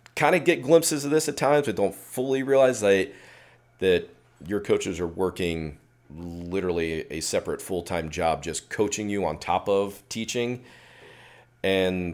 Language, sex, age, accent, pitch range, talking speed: English, male, 40-59, American, 85-105 Hz, 150 wpm